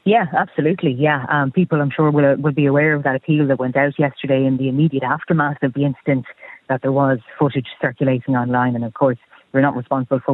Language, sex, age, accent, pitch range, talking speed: English, female, 30-49, Irish, 125-145 Hz, 220 wpm